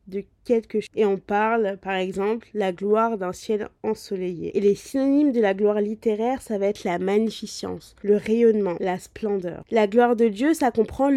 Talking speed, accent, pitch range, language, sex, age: 185 wpm, French, 200-240 Hz, French, female, 20-39